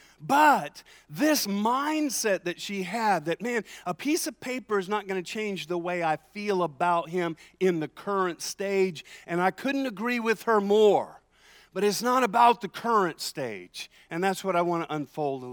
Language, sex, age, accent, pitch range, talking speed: English, male, 50-69, American, 160-225 Hz, 190 wpm